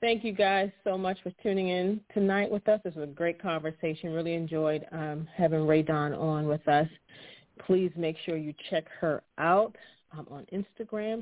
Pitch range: 155-185 Hz